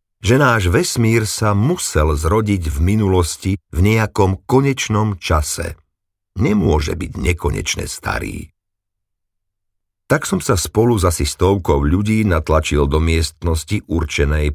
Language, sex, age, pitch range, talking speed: Slovak, male, 50-69, 80-100 Hz, 115 wpm